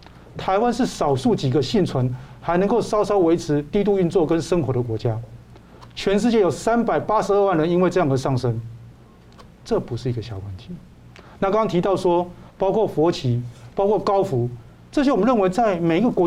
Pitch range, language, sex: 125-190 Hz, Chinese, male